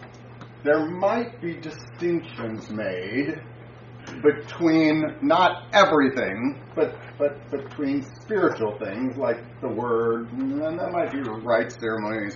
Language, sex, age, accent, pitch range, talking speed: English, male, 40-59, American, 120-195 Hz, 110 wpm